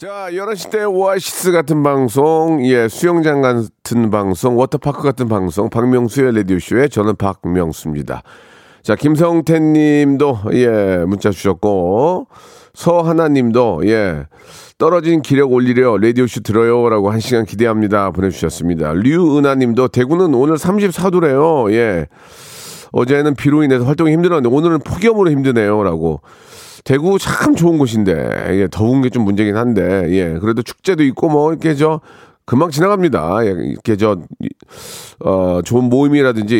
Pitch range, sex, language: 105-155 Hz, male, Korean